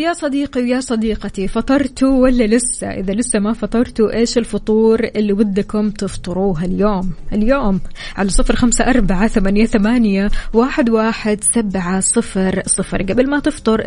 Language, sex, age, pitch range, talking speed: Arabic, female, 20-39, 195-230 Hz, 110 wpm